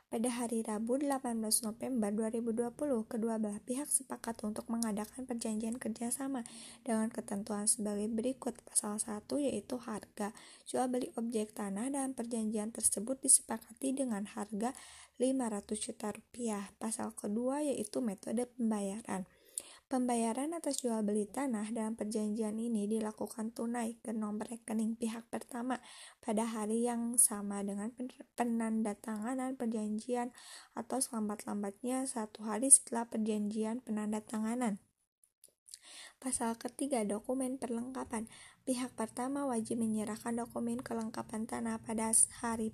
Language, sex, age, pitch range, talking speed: Indonesian, female, 20-39, 215-245 Hz, 120 wpm